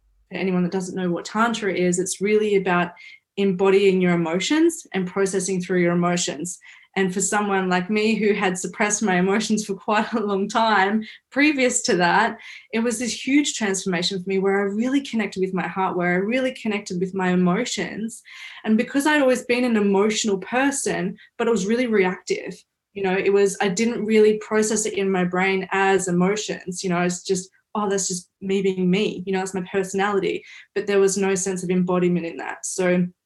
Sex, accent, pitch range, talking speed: female, Australian, 185-210 Hz, 195 wpm